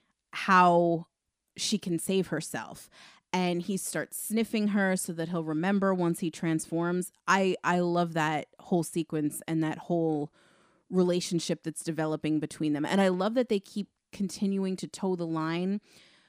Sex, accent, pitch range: female, American, 165-195 Hz